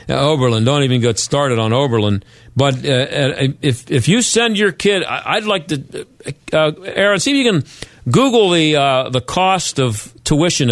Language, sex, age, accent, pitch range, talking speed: English, male, 50-69, American, 130-185 Hz, 190 wpm